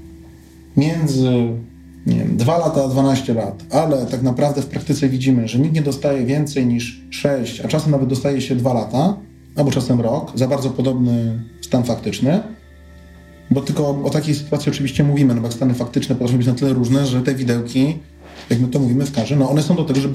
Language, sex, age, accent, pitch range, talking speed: Polish, male, 30-49, native, 110-140 Hz, 200 wpm